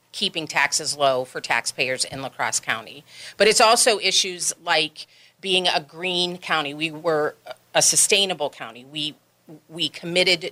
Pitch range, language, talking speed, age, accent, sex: 140-165 Hz, English, 150 wpm, 40-59, American, female